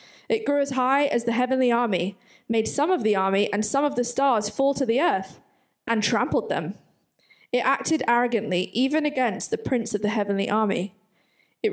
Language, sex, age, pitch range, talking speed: English, female, 20-39, 200-245 Hz, 190 wpm